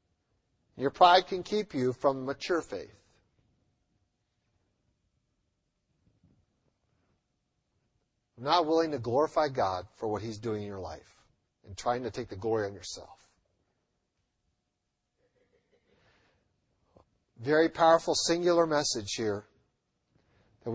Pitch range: 105-150 Hz